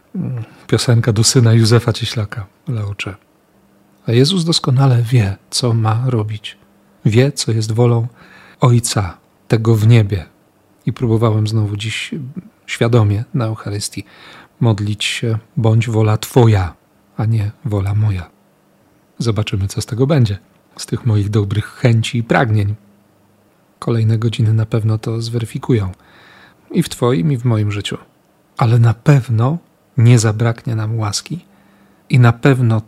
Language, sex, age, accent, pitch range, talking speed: Polish, male, 40-59, native, 105-125 Hz, 130 wpm